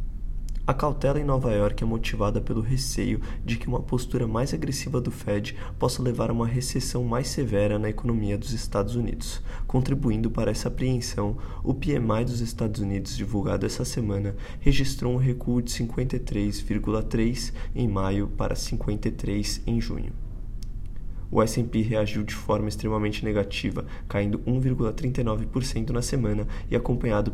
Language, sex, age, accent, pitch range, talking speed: Portuguese, male, 20-39, Brazilian, 100-120 Hz, 145 wpm